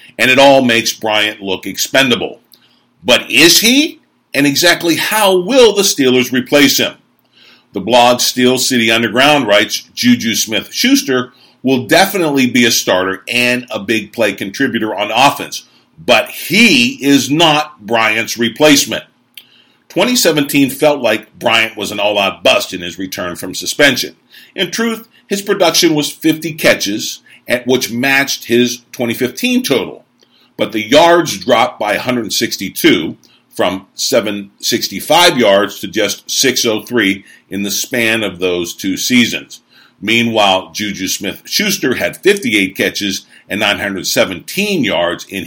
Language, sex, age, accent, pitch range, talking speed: English, male, 50-69, American, 110-160 Hz, 130 wpm